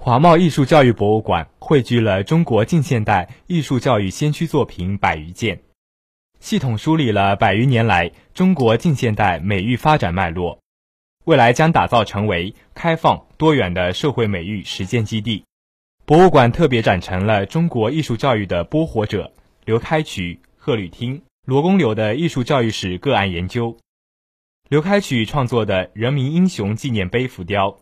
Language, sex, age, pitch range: Chinese, male, 20-39, 100-145 Hz